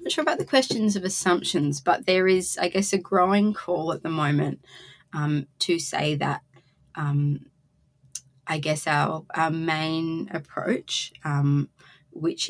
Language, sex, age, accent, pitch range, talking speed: English, female, 20-39, Australian, 140-155 Hz, 145 wpm